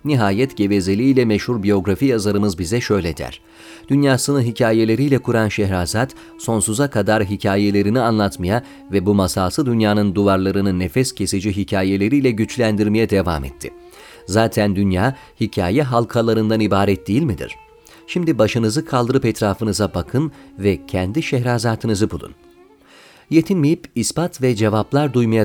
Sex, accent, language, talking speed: male, native, Turkish, 115 wpm